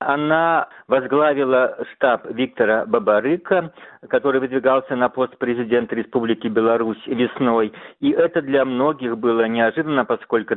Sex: male